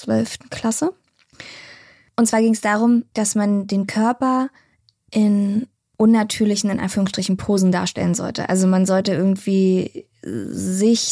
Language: German